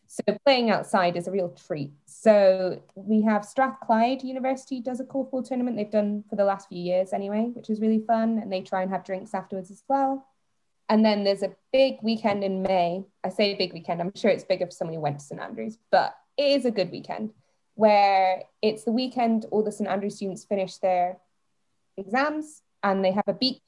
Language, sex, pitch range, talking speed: English, female, 185-220 Hz, 210 wpm